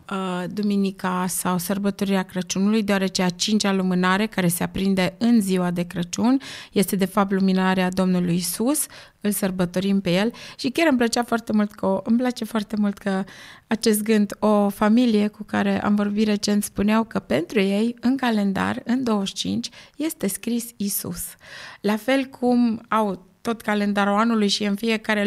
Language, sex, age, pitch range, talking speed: Romanian, female, 20-39, 195-235 Hz, 160 wpm